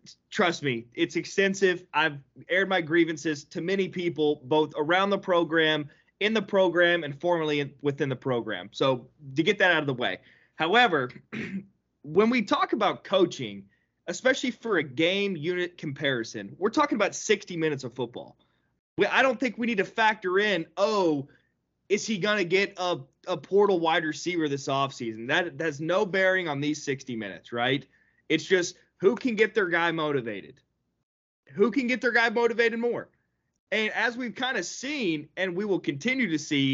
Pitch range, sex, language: 145-205 Hz, male, English